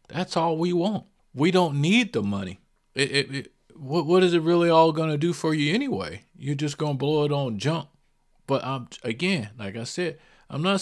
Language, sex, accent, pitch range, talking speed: English, male, American, 115-165 Hz, 200 wpm